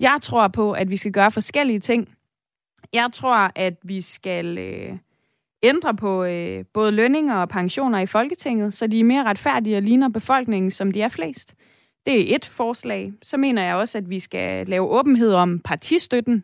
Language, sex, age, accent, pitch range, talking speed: Danish, female, 20-39, native, 190-235 Hz, 185 wpm